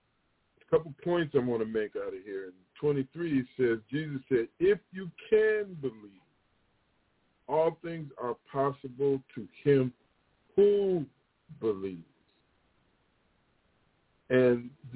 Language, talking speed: English, 110 wpm